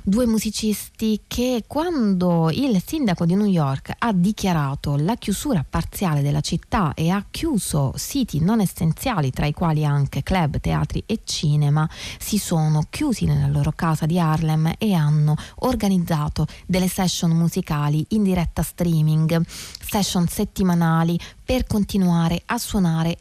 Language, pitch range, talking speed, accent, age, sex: Italian, 155-215 Hz, 135 wpm, native, 30-49, female